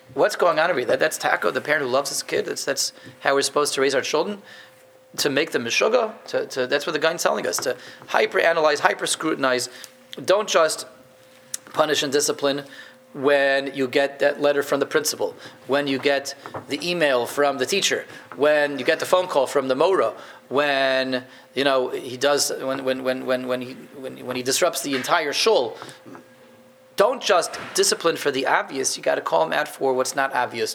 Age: 30-49